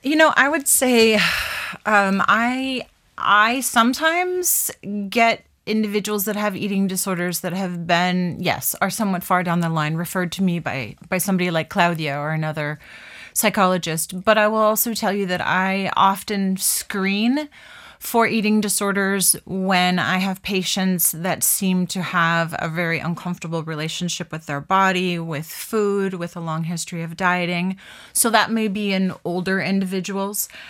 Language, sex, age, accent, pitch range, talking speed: English, female, 30-49, American, 175-205 Hz, 155 wpm